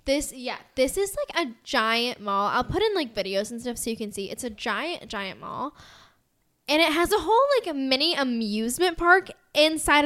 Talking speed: 210 wpm